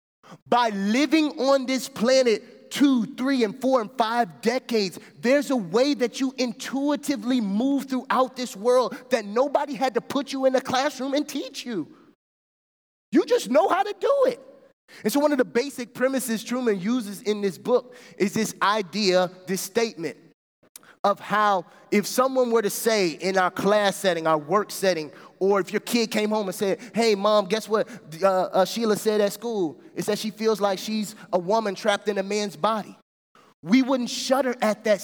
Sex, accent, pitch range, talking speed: male, American, 200-260 Hz, 185 wpm